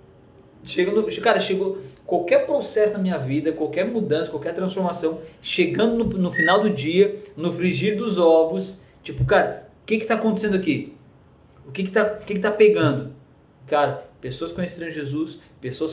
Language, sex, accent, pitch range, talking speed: Portuguese, male, Brazilian, 140-190 Hz, 160 wpm